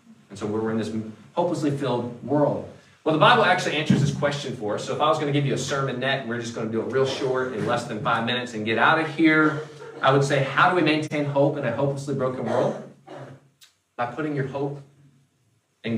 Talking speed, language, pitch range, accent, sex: 245 wpm, English, 110-150 Hz, American, male